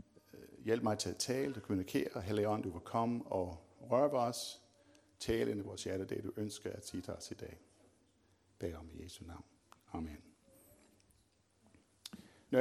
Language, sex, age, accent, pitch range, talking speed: Danish, male, 60-79, native, 100-130 Hz, 160 wpm